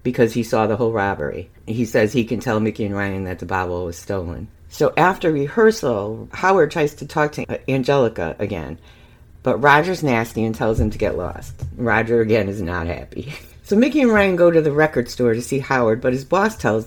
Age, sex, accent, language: 50-69, female, American, English